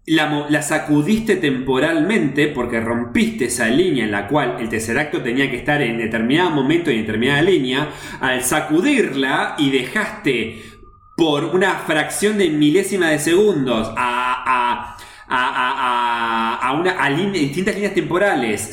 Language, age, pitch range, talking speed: Spanish, 20-39, 135-215 Hz, 125 wpm